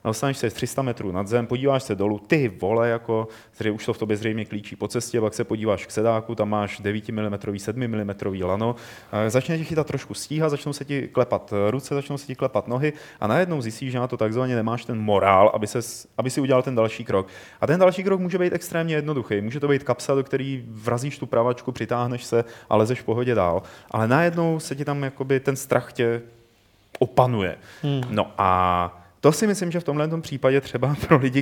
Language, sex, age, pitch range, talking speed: Czech, male, 30-49, 110-135 Hz, 210 wpm